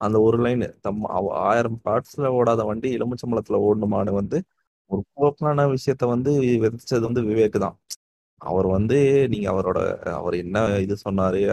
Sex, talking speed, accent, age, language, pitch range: male, 145 wpm, native, 30-49, Tamil, 105-130 Hz